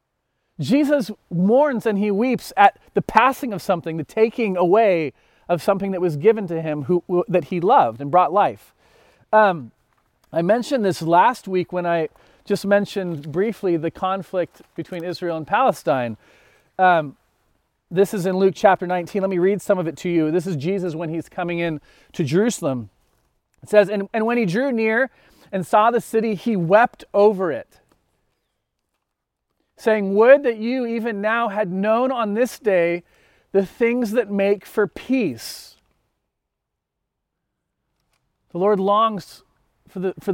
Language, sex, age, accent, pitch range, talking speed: English, male, 40-59, American, 180-235 Hz, 155 wpm